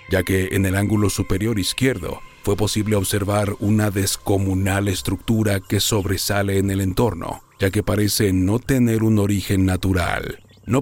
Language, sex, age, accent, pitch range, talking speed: Spanish, male, 40-59, Mexican, 95-115 Hz, 150 wpm